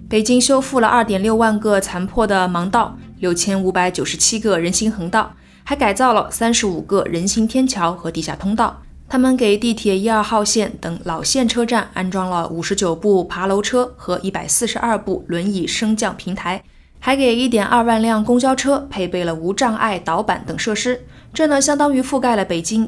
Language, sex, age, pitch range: Chinese, female, 20-39, 185-235 Hz